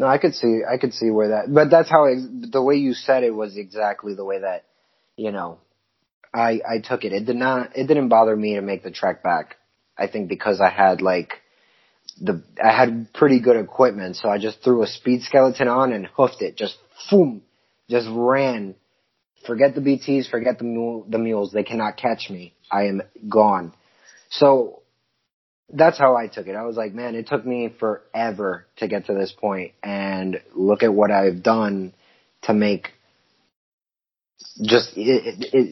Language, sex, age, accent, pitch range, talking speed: English, male, 20-39, American, 100-130 Hz, 185 wpm